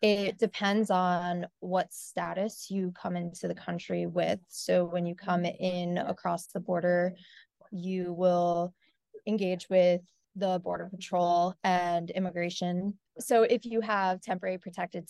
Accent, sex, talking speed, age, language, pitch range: American, female, 135 wpm, 20-39, English, 180-205 Hz